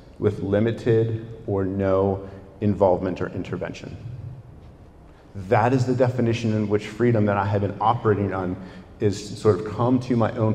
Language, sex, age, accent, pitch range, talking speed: English, male, 40-59, American, 105-130 Hz, 155 wpm